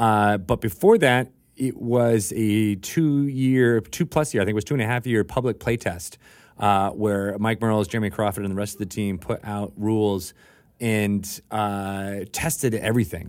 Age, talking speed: 30-49, 170 wpm